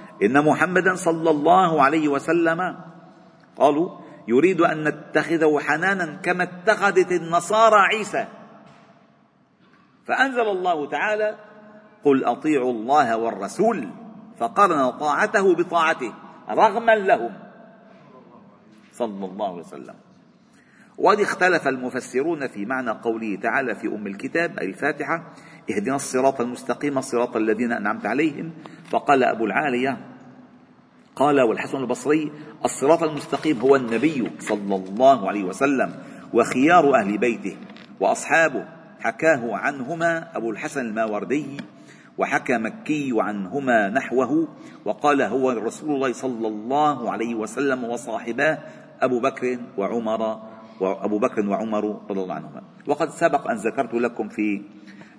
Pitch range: 115-190 Hz